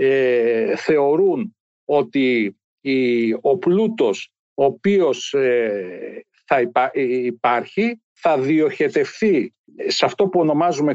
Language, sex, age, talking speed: Greek, male, 60-79, 75 wpm